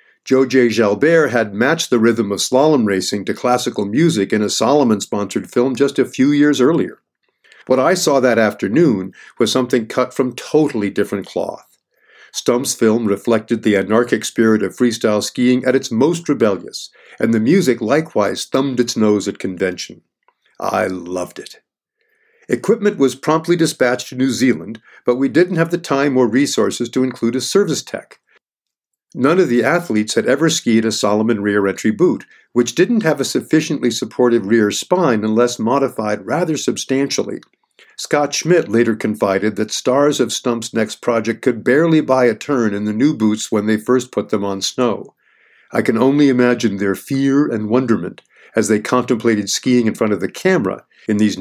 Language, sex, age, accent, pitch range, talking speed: English, male, 50-69, American, 110-145 Hz, 170 wpm